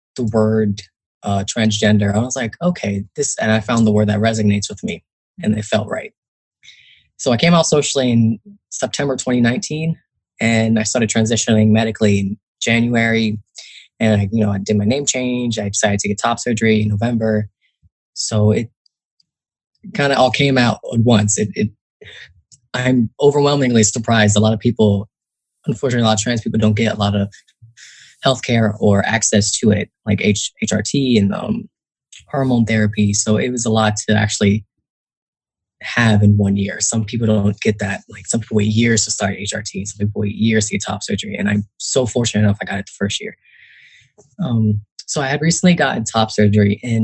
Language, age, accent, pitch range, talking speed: English, 20-39, American, 105-120 Hz, 185 wpm